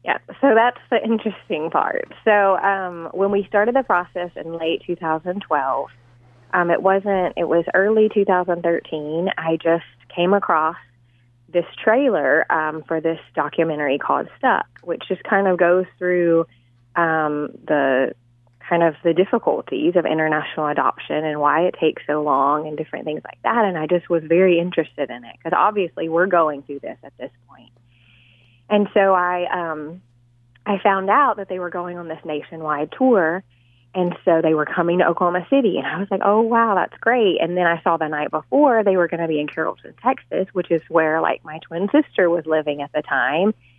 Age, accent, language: 20-39, American, English